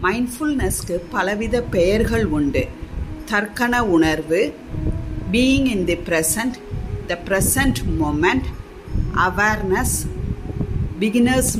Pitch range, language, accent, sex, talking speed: 175-245 Hz, Tamil, native, female, 80 wpm